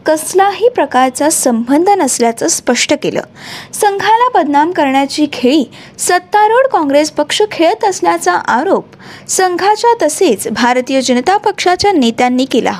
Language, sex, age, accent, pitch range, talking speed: Marathi, female, 20-39, native, 265-380 Hz, 110 wpm